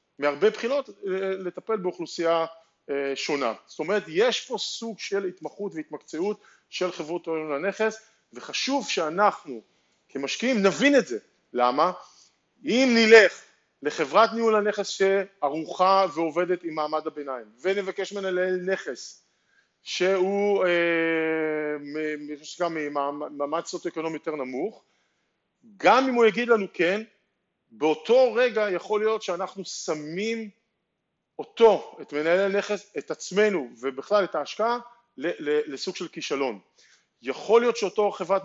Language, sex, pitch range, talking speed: Hebrew, male, 160-215 Hz, 110 wpm